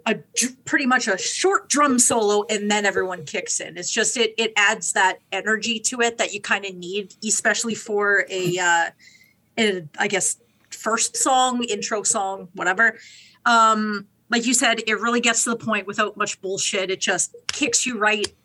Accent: American